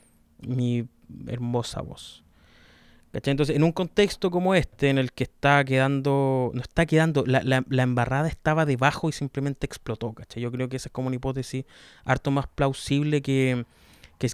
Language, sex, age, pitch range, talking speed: Greek, male, 20-39, 125-140 Hz, 170 wpm